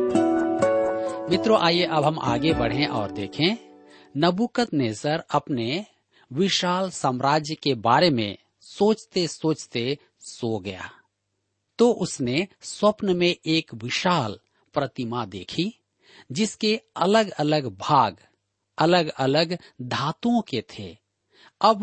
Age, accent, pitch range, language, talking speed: 40-59, native, 125-185 Hz, Hindi, 105 wpm